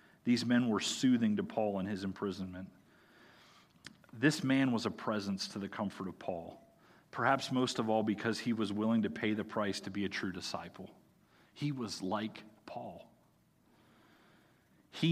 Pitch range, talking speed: 100-120 Hz, 165 wpm